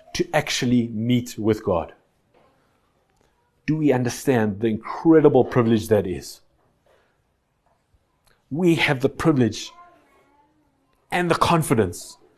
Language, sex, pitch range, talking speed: English, male, 130-165 Hz, 95 wpm